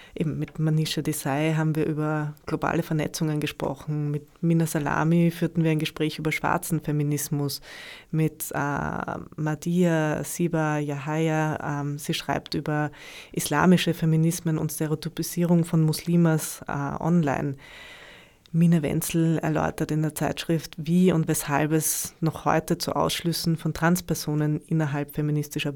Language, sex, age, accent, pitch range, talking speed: German, female, 20-39, German, 150-165 Hz, 125 wpm